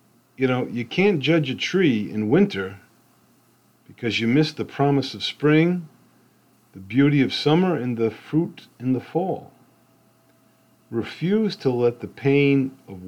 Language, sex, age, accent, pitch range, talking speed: English, male, 50-69, American, 110-135 Hz, 145 wpm